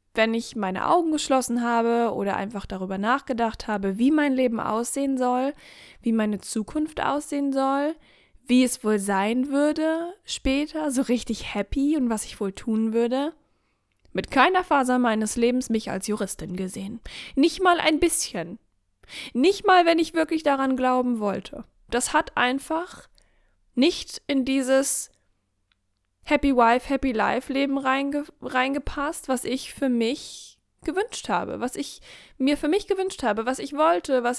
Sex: female